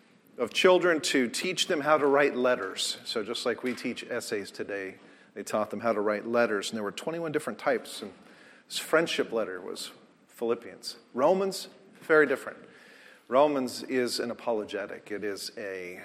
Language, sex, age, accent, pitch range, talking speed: English, male, 40-59, American, 120-160 Hz, 170 wpm